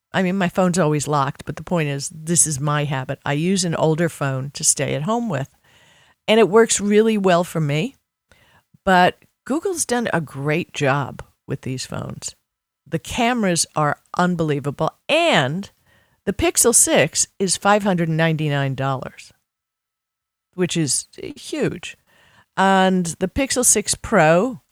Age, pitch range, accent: 50-69, 150-195 Hz, American